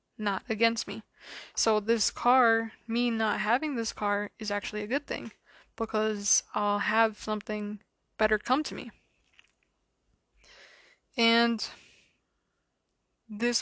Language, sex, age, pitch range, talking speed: English, female, 20-39, 210-235 Hz, 115 wpm